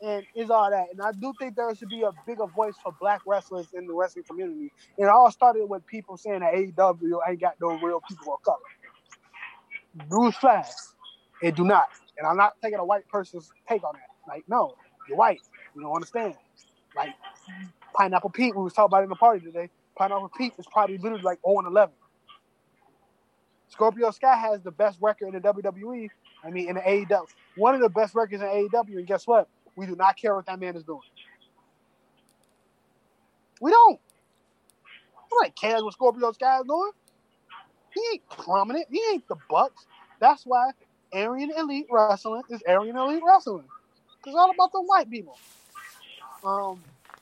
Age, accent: 20-39, American